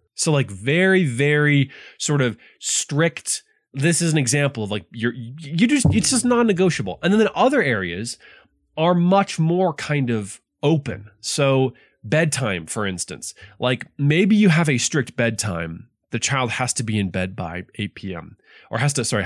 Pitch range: 105-165 Hz